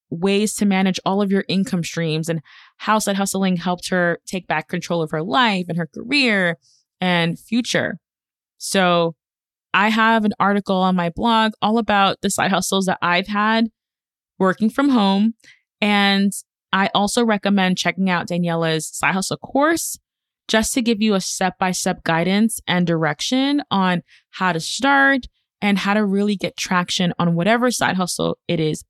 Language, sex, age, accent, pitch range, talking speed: English, female, 20-39, American, 170-215 Hz, 170 wpm